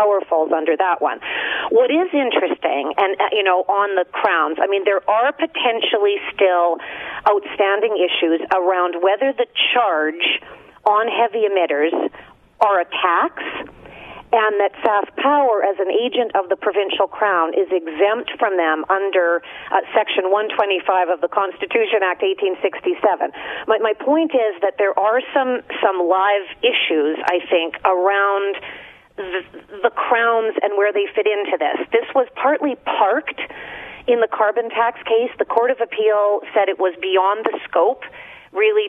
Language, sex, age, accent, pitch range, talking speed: English, female, 40-59, American, 190-245 Hz, 150 wpm